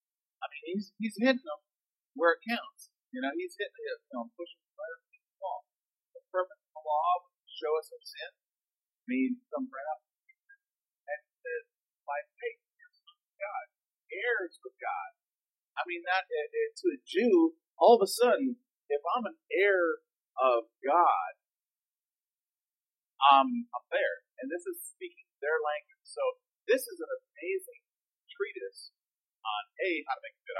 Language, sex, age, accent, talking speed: English, male, 40-59, American, 170 wpm